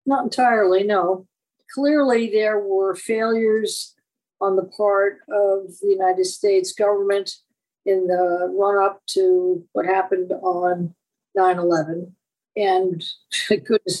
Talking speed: 105 wpm